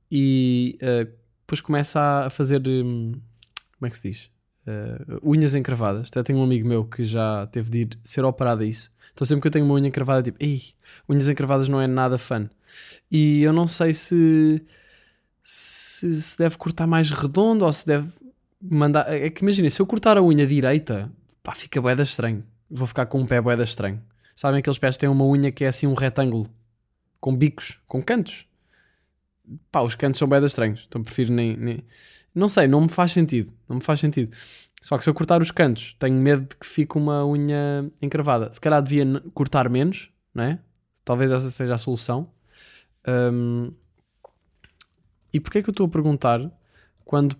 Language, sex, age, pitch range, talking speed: Portuguese, male, 20-39, 120-150 Hz, 195 wpm